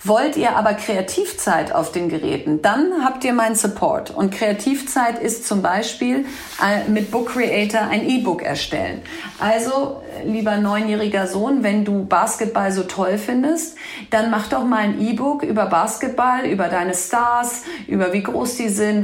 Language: German